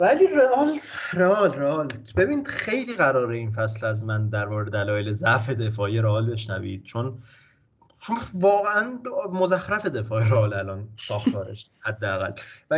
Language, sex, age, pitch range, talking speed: English, male, 30-49, 110-180 Hz, 130 wpm